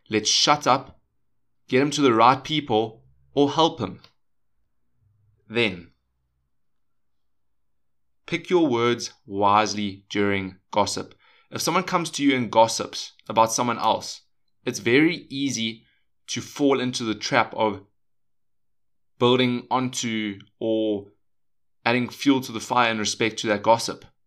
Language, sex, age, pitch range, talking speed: English, male, 20-39, 105-135 Hz, 125 wpm